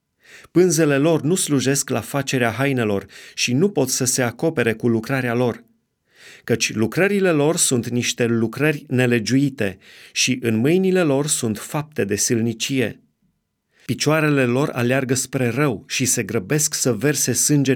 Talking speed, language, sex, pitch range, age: 140 wpm, Romanian, male, 120-150 Hz, 30-49